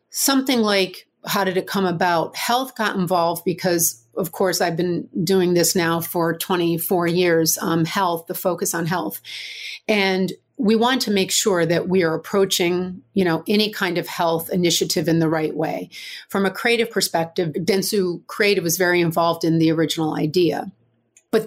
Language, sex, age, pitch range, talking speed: English, female, 40-59, 170-200 Hz, 175 wpm